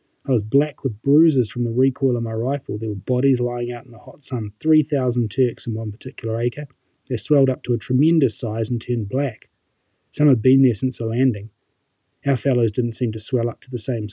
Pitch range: 115-130 Hz